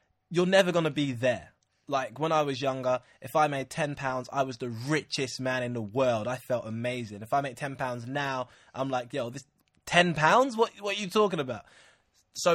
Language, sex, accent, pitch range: English, male, British, 125-155 Hz